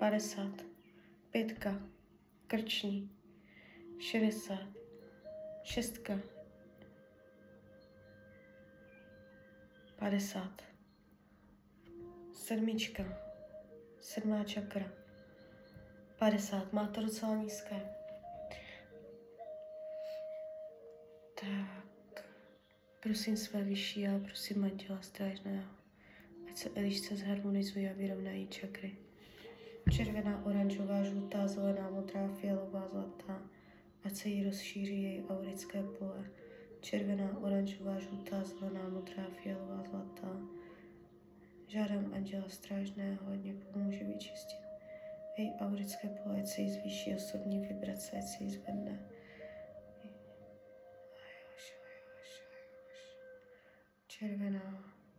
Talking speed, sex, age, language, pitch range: 80 wpm, female, 20-39, Czech, 180-215 Hz